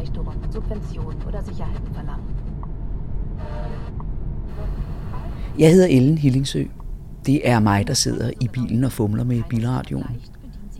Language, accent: Danish, native